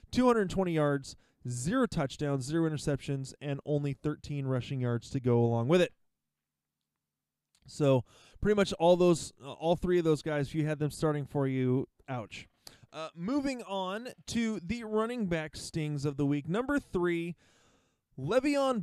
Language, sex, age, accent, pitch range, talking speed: English, male, 20-39, American, 135-180 Hz, 155 wpm